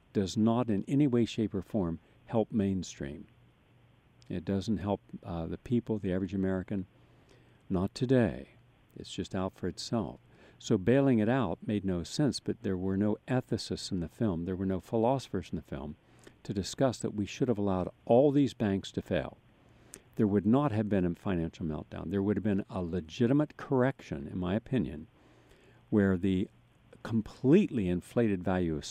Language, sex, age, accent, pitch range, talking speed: English, male, 60-79, American, 95-120 Hz, 175 wpm